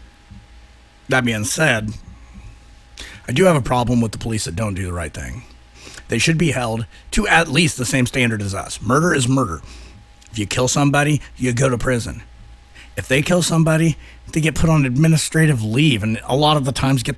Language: English